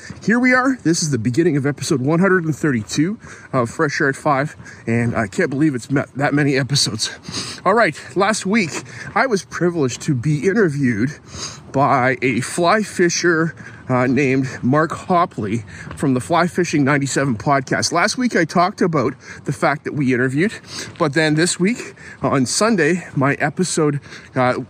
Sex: male